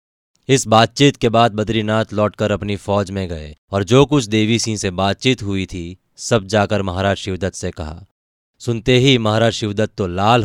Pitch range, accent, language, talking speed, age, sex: 95-125 Hz, native, Hindi, 180 wpm, 30-49, male